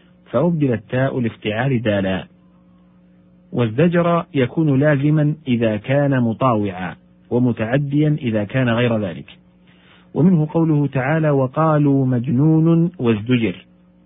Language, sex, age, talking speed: Arabic, male, 50-69, 90 wpm